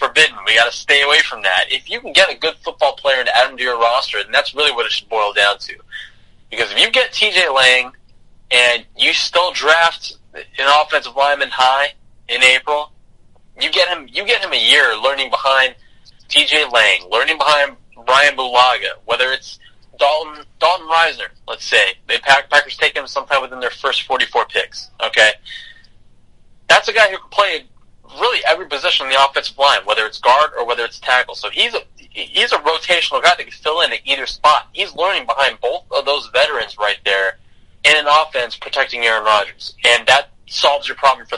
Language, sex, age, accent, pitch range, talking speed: English, male, 20-39, American, 120-155 Hz, 200 wpm